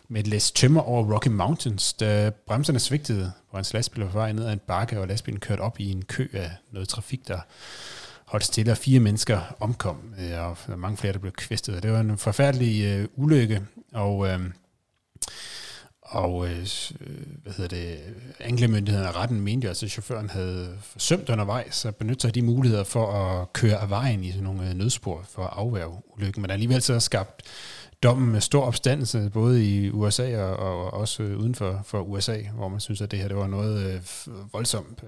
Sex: male